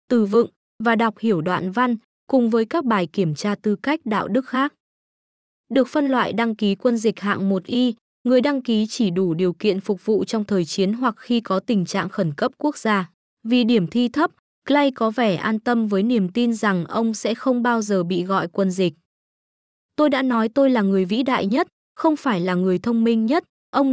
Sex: female